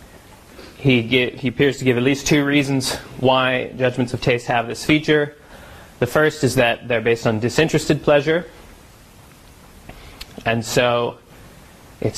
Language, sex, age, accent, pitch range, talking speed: English, male, 30-49, American, 115-135 Hz, 140 wpm